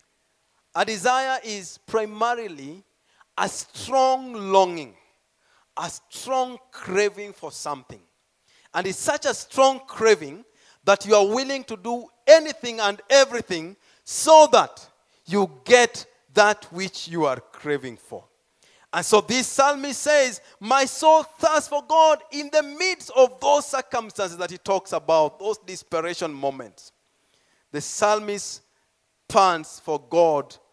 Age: 40-59